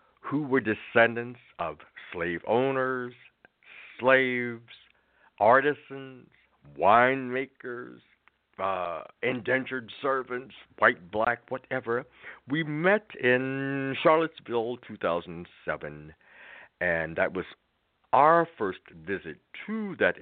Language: English